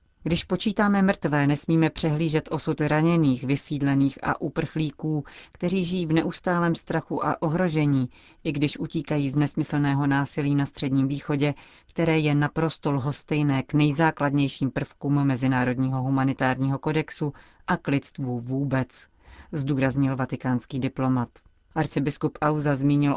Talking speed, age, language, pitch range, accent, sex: 120 wpm, 40-59, Czech, 135-155 Hz, native, female